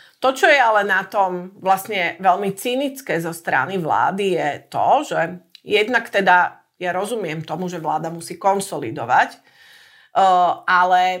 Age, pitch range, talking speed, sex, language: 40-59, 170-205 Hz, 135 wpm, female, Slovak